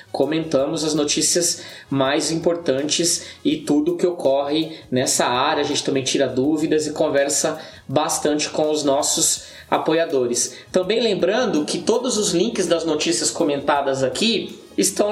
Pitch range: 145-210 Hz